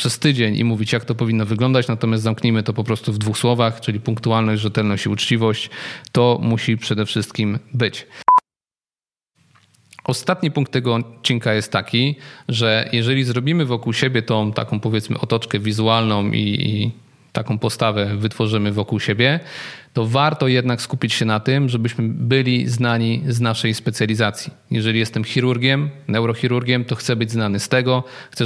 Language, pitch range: Polish, 110-130 Hz